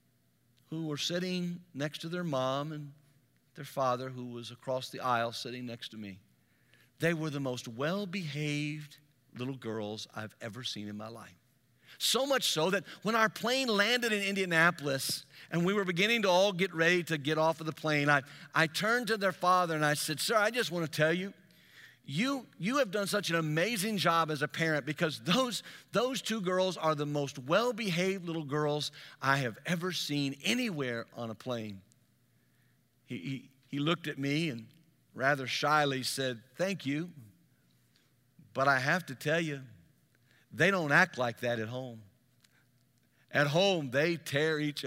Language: English